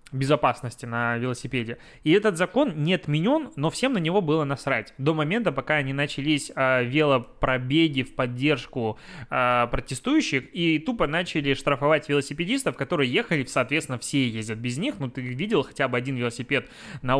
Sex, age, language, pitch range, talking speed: male, 20-39, Russian, 125-155 Hz, 150 wpm